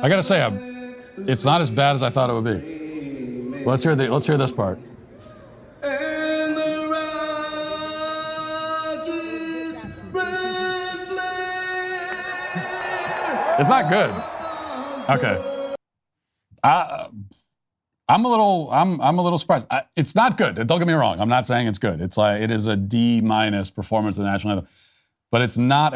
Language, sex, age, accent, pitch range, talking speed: English, male, 40-59, American, 105-160 Hz, 145 wpm